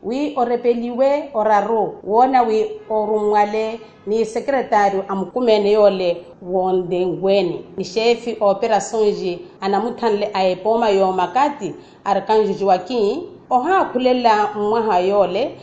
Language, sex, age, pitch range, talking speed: Portuguese, female, 40-59, 195-240 Hz, 85 wpm